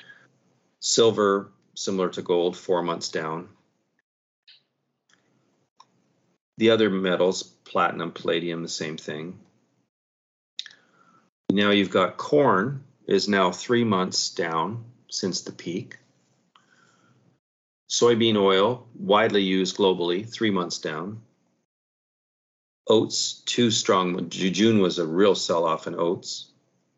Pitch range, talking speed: 85-115 Hz, 100 wpm